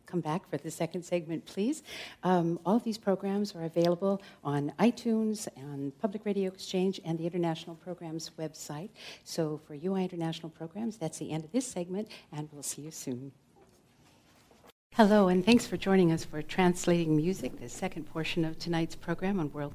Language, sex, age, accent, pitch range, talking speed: English, female, 60-79, American, 155-195 Hz, 175 wpm